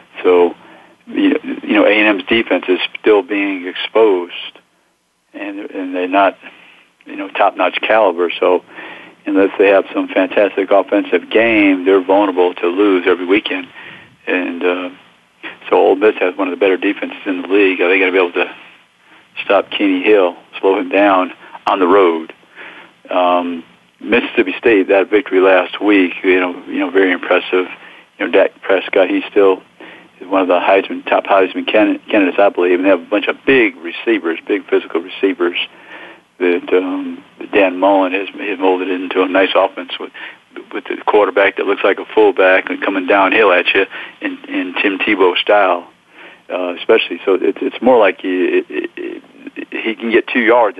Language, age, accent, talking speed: English, 50-69, American, 170 wpm